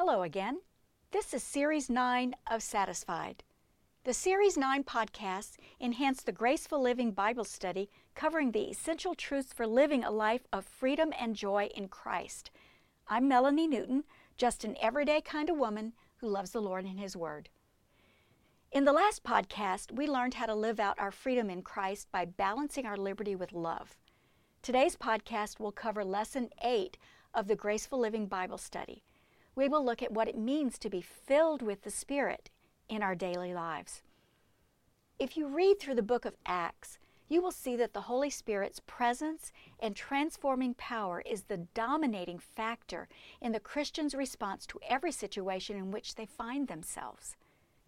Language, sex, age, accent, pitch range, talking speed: English, female, 50-69, American, 210-275 Hz, 165 wpm